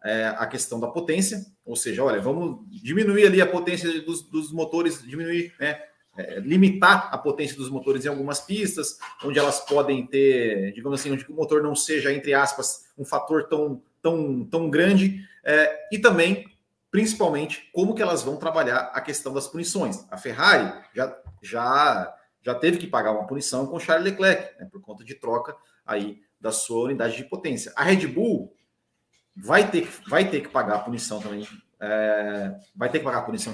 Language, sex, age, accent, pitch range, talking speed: Portuguese, male, 30-49, Brazilian, 130-190 Hz, 180 wpm